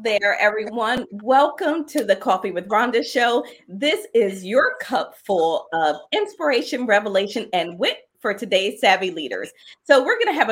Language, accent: English, American